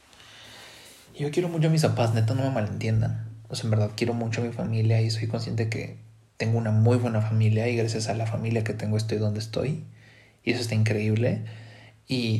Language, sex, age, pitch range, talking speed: English, male, 30-49, 110-130 Hz, 210 wpm